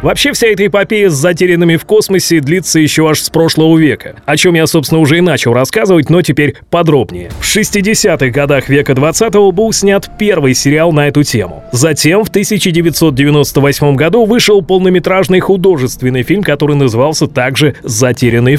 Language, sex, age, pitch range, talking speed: Russian, male, 30-49, 135-175 Hz, 160 wpm